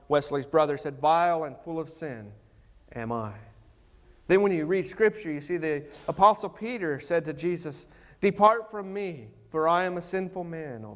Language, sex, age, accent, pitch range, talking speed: English, male, 40-59, American, 145-190 Hz, 180 wpm